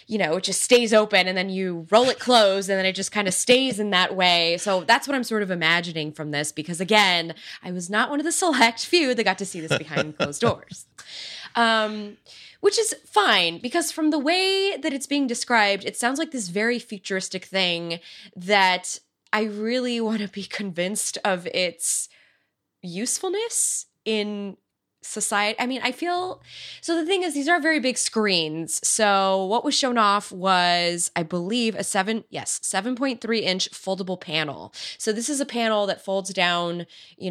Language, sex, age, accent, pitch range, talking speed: English, female, 20-39, American, 175-230 Hz, 185 wpm